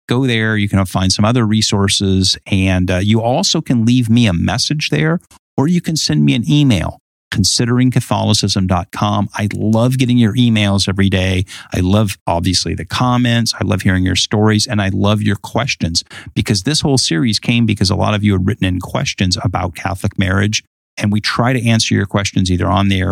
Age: 50-69